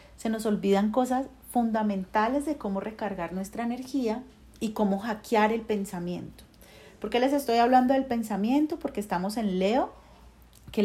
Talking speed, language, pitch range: 150 wpm, Spanish, 195-245 Hz